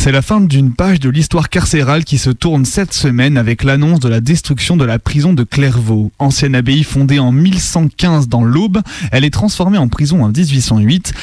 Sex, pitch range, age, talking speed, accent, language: male, 125-160 Hz, 20-39, 200 wpm, French, French